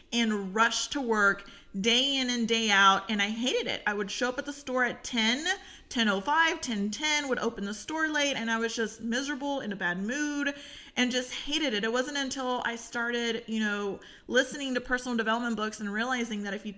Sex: female